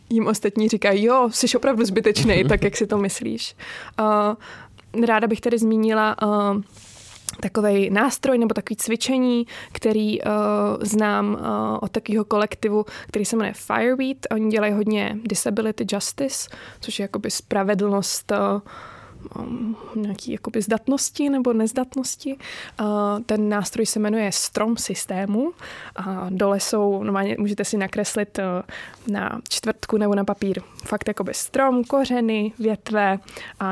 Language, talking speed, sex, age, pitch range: Czech, 135 wpm, female, 20-39, 205-230 Hz